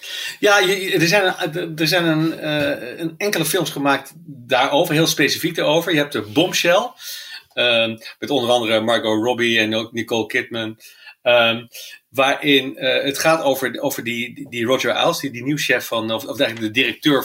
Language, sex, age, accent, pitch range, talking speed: English, male, 40-59, Dutch, 120-160 Hz, 180 wpm